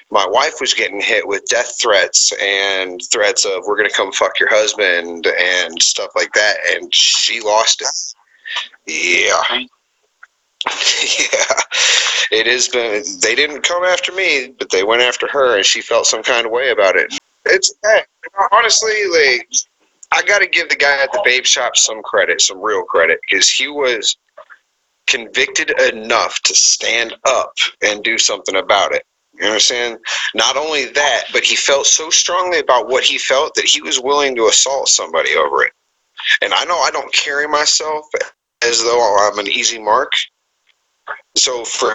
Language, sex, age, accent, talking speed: English, male, 30-49, American, 175 wpm